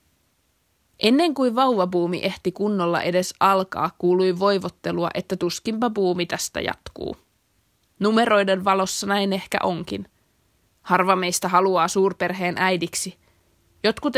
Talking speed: 100 wpm